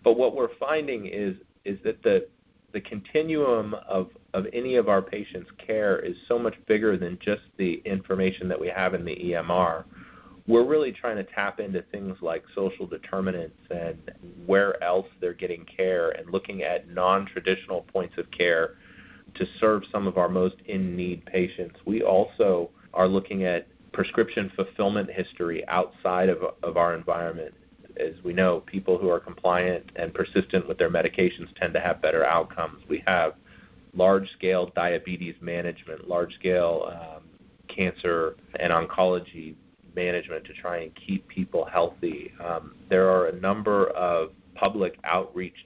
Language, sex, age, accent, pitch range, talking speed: English, male, 30-49, American, 90-105 Hz, 150 wpm